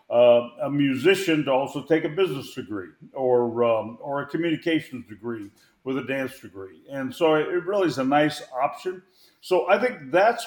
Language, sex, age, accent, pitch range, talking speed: English, male, 50-69, American, 130-175 Hz, 185 wpm